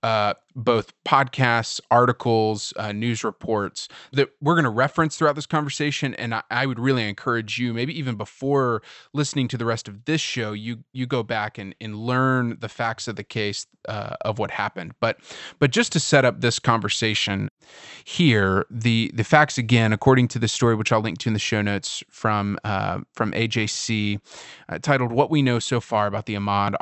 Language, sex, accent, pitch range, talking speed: English, male, American, 105-130 Hz, 195 wpm